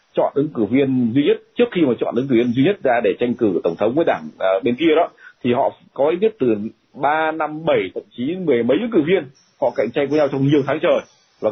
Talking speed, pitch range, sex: 275 wpm, 125-185 Hz, male